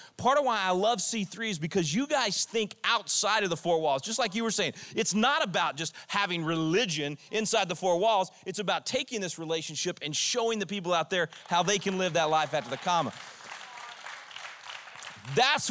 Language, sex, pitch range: English, male, 165-200 Hz